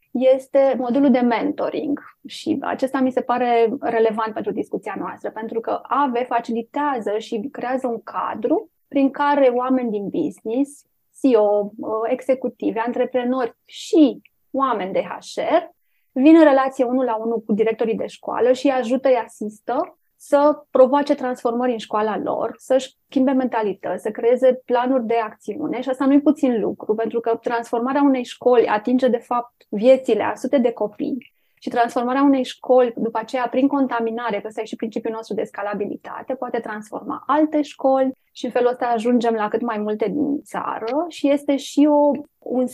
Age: 20-39